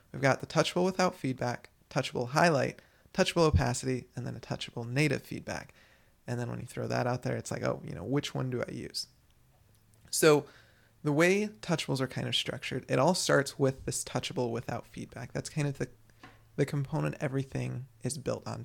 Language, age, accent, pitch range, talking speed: English, 20-39, American, 115-145 Hz, 195 wpm